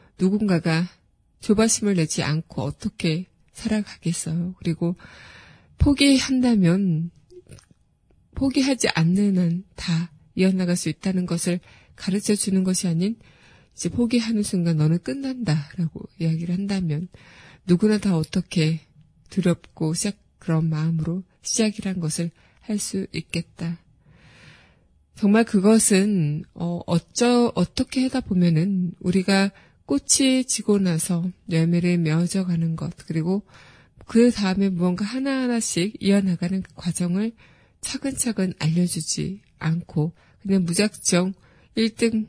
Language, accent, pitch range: Korean, native, 165-205 Hz